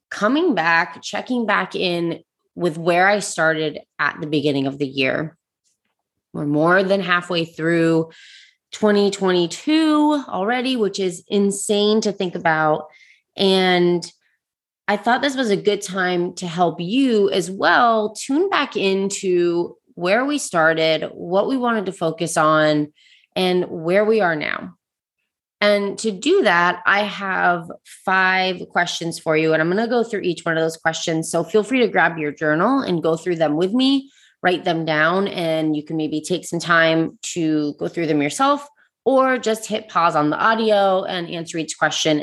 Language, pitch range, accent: English, 160-215 Hz, American